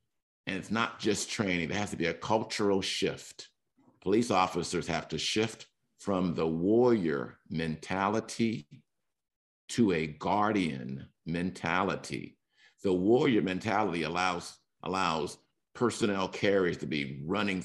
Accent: American